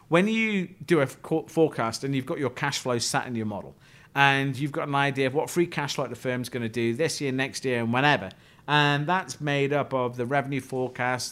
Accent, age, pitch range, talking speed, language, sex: British, 40-59, 130-165 Hz, 235 wpm, English, male